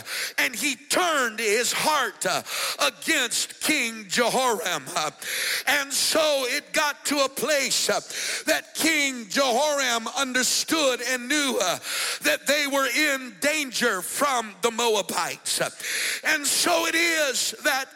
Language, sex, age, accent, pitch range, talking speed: English, male, 50-69, American, 245-305 Hz, 115 wpm